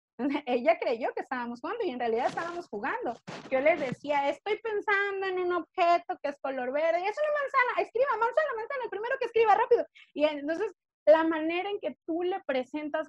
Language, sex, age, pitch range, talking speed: Spanish, female, 30-49, 215-290 Hz, 195 wpm